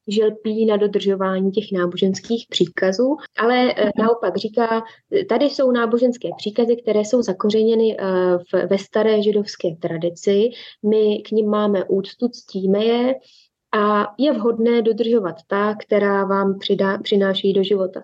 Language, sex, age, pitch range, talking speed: Slovak, female, 20-39, 195-225 Hz, 130 wpm